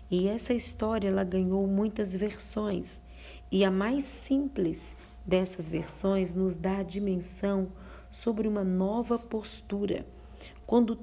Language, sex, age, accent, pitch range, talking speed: Portuguese, female, 40-59, Brazilian, 185-230 Hz, 120 wpm